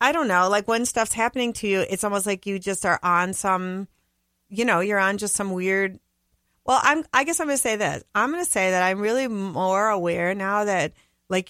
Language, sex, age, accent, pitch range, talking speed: English, female, 30-49, American, 165-210 Hz, 235 wpm